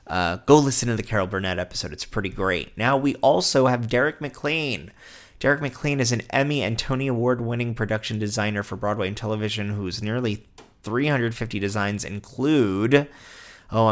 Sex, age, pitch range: male, 30-49, 100-115 Hz